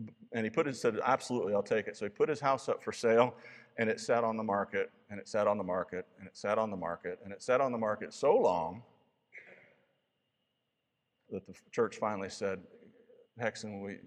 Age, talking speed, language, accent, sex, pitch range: 50-69, 215 wpm, English, American, male, 115-155 Hz